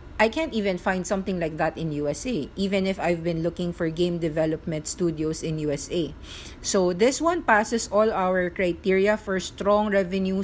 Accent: Filipino